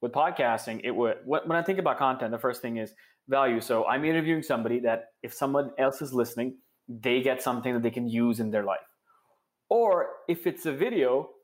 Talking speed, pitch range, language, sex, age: 205 wpm, 120-150 Hz, English, male, 20-39